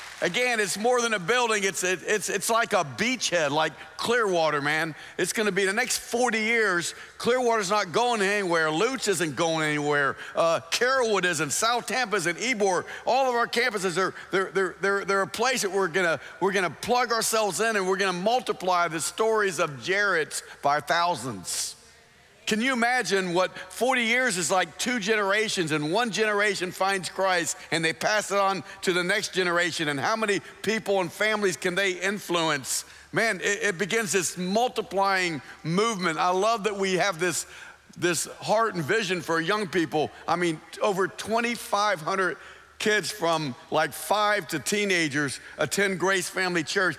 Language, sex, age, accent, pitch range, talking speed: English, male, 50-69, American, 175-220 Hz, 175 wpm